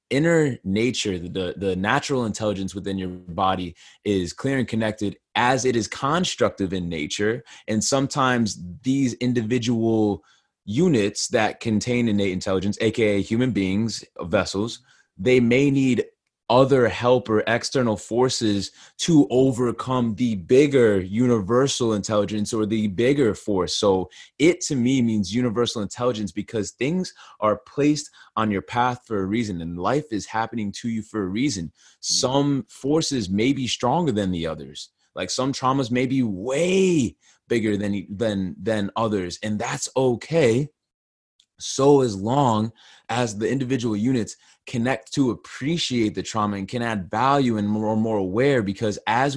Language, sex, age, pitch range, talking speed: English, male, 20-39, 100-125 Hz, 145 wpm